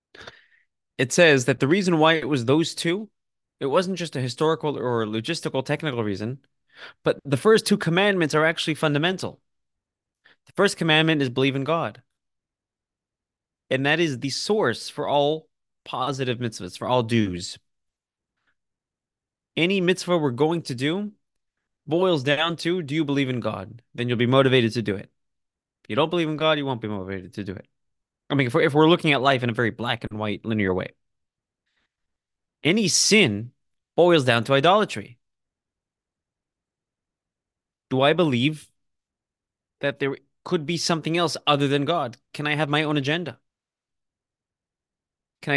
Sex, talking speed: male, 160 wpm